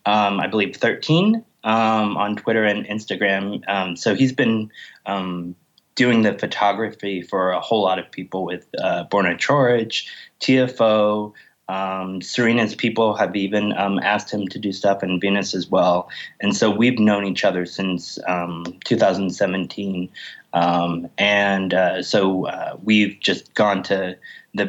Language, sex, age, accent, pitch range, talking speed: English, male, 20-39, American, 95-115 Hz, 150 wpm